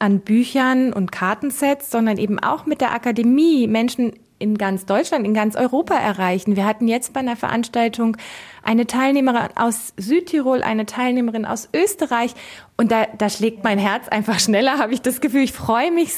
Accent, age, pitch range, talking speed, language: German, 20-39, 205-260 Hz, 175 wpm, German